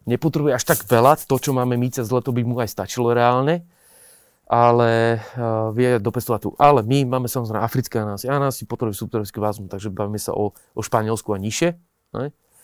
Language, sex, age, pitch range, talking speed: Slovak, male, 30-49, 110-125 Hz, 190 wpm